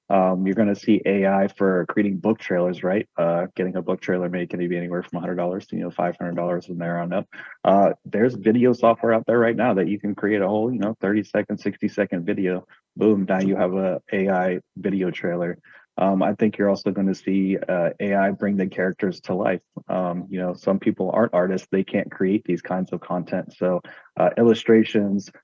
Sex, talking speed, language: male, 210 wpm, English